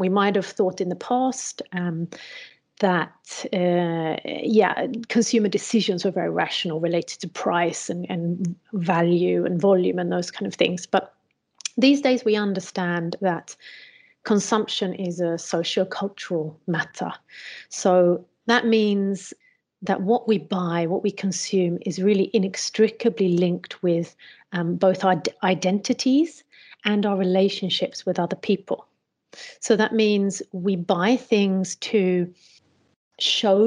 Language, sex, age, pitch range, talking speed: Swedish, female, 30-49, 175-210 Hz, 130 wpm